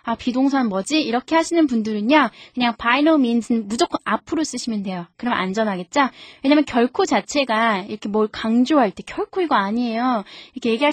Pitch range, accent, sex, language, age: 205-280 Hz, native, female, Korean, 20-39